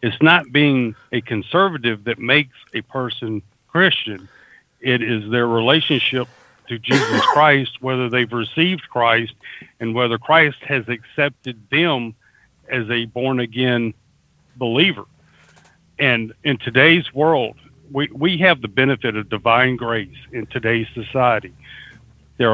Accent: American